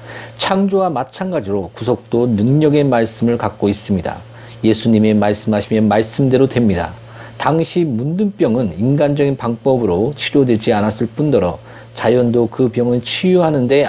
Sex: male